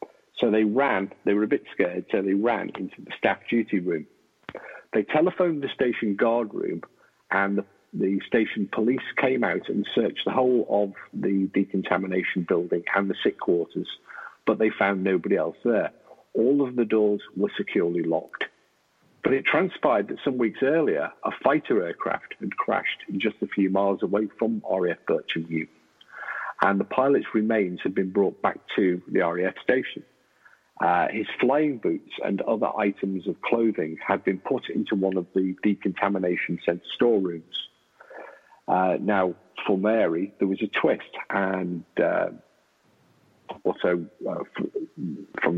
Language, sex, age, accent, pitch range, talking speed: English, male, 50-69, British, 95-125 Hz, 155 wpm